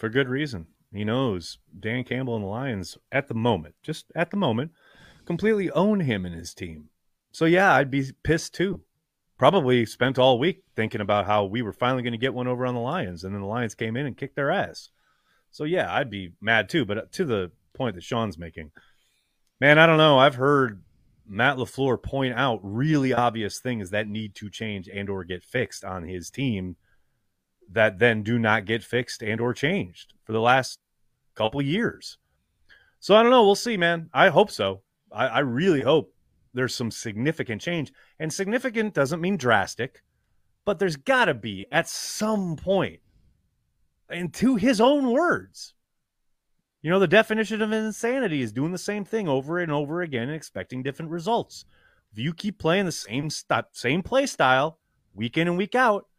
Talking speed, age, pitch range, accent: 190 wpm, 30-49, 110-175 Hz, American